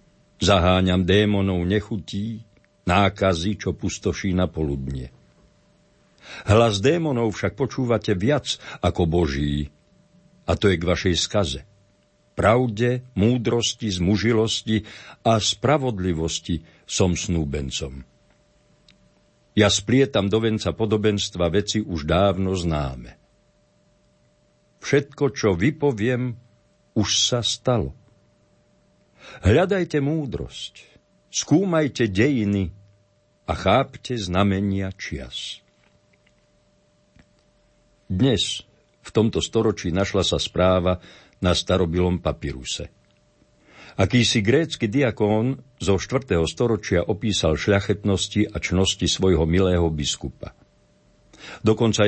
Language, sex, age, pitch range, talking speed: Slovak, male, 60-79, 90-115 Hz, 85 wpm